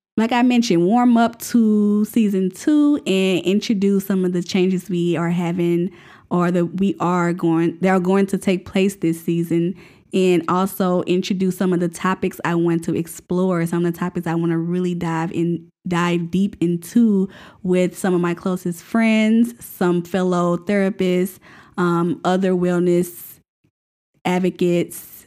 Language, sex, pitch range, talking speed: English, female, 170-195 Hz, 155 wpm